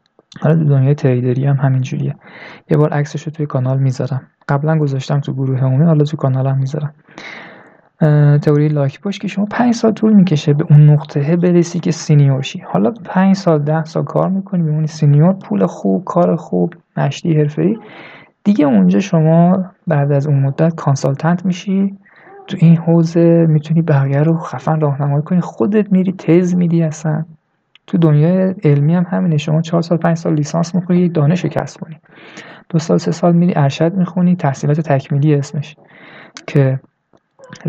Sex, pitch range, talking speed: male, 145-175 Hz, 160 wpm